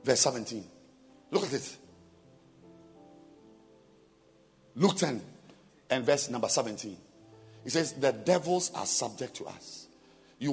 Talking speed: 115 wpm